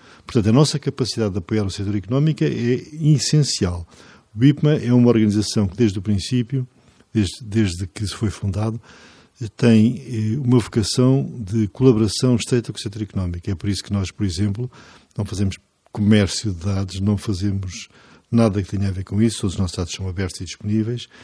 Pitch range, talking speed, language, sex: 100-120 Hz, 185 wpm, Portuguese, male